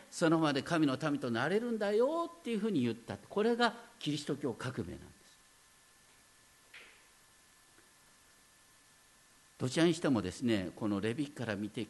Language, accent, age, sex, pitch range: Japanese, native, 50-69, male, 115-185 Hz